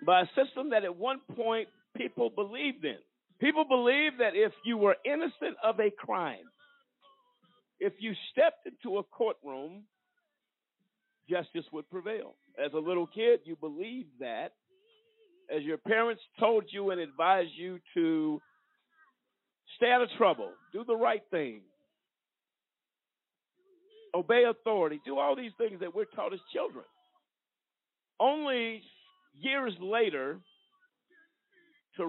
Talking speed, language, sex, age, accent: 125 wpm, English, male, 50-69, American